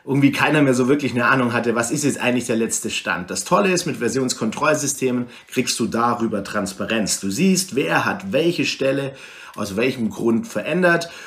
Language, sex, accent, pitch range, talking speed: German, male, German, 105-135 Hz, 180 wpm